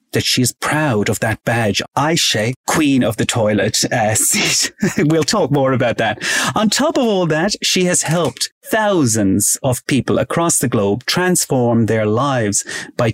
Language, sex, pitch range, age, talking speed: English, male, 110-140 Hz, 30-49, 165 wpm